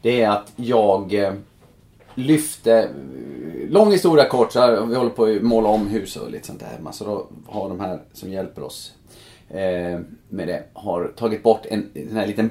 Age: 30-49